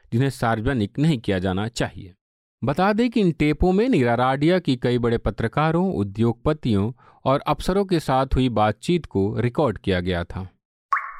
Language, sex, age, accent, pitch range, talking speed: Hindi, male, 40-59, native, 105-150 Hz, 155 wpm